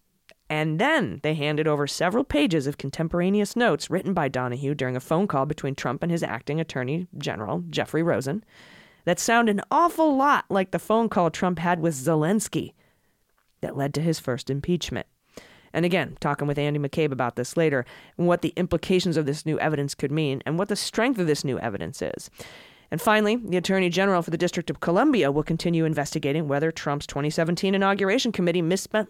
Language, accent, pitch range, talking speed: English, American, 145-185 Hz, 190 wpm